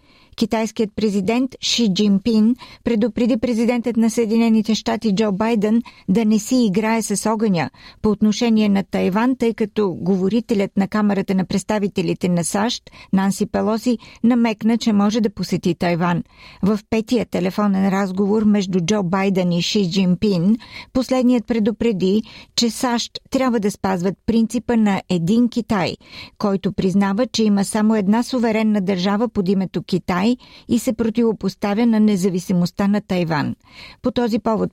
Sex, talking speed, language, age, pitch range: female, 140 wpm, Bulgarian, 50-69, 195-225 Hz